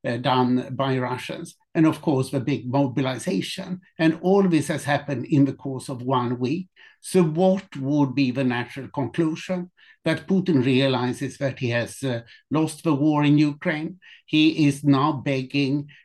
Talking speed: 165 wpm